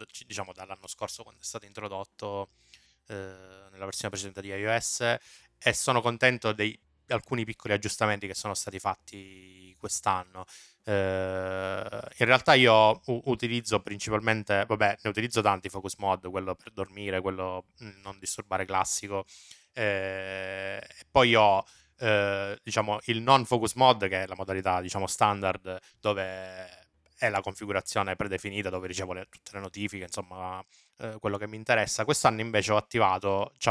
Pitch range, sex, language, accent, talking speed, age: 95-110 Hz, male, Italian, native, 140 wpm, 20-39